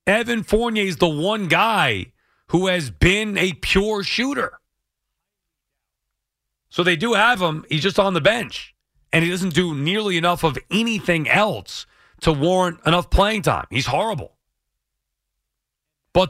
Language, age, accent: English, 40-59, American